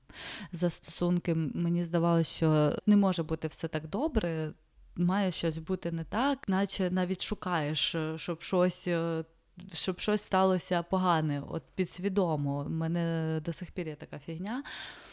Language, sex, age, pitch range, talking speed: Ukrainian, female, 20-39, 160-190 Hz, 140 wpm